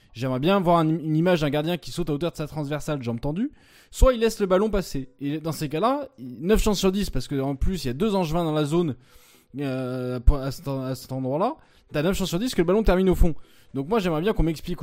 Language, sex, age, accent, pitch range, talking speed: French, male, 20-39, French, 140-185 Hz, 255 wpm